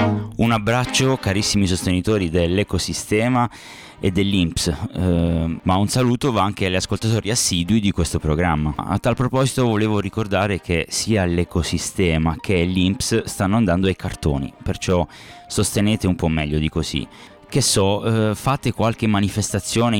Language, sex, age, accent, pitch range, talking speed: English, male, 20-39, Italian, 85-110 Hz, 140 wpm